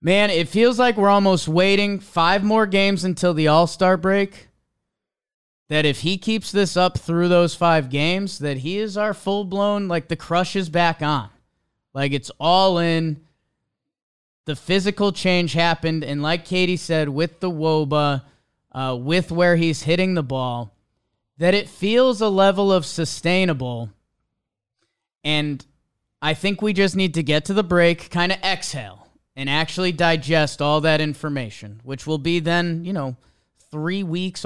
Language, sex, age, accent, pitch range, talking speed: English, male, 20-39, American, 145-185 Hz, 160 wpm